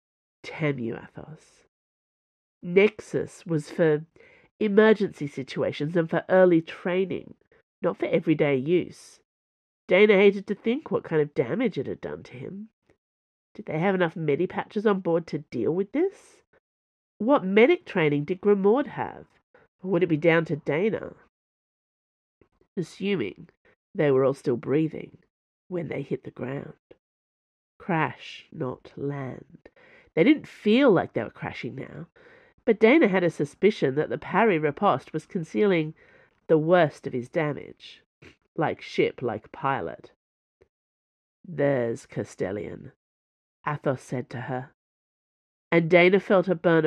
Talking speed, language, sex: 135 wpm, English, female